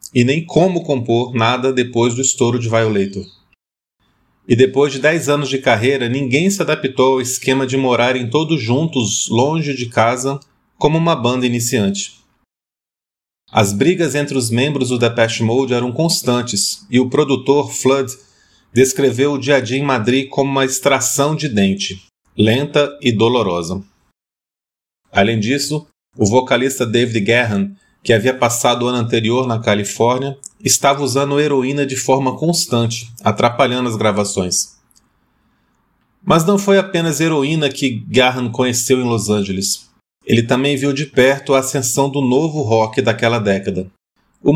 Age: 40-59